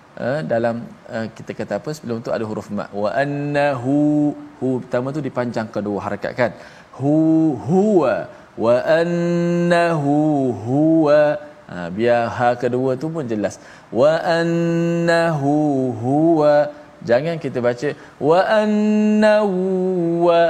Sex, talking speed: male, 120 wpm